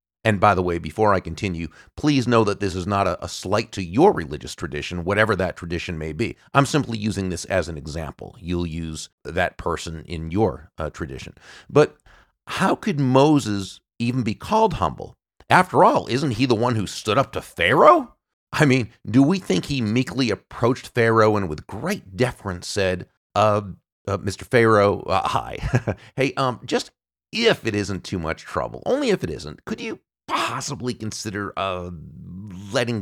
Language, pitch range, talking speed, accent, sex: English, 90-130 Hz, 180 wpm, American, male